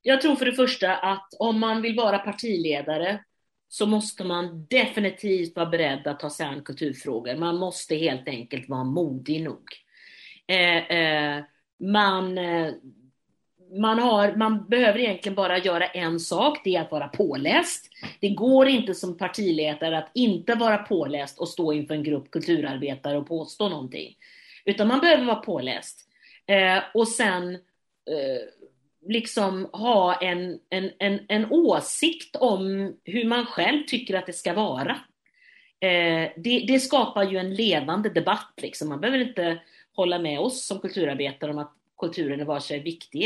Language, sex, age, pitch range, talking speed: Swedish, female, 40-59, 160-220 Hz, 150 wpm